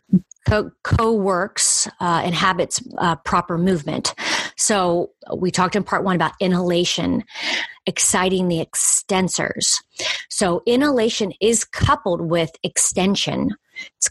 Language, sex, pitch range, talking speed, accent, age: English, female, 175-225 Hz, 105 wpm, American, 30-49